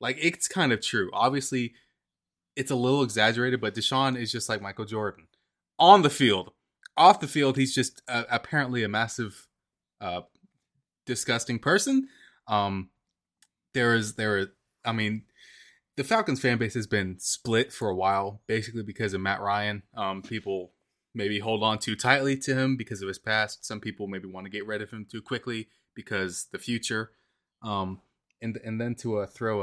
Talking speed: 180 wpm